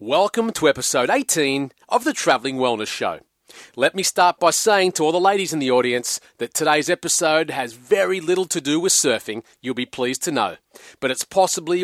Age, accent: 30-49, Australian